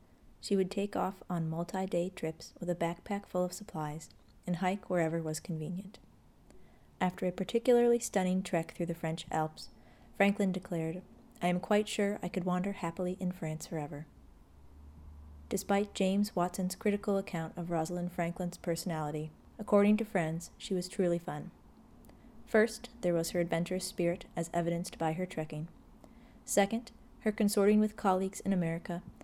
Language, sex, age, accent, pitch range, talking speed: English, female, 30-49, American, 165-195 Hz, 150 wpm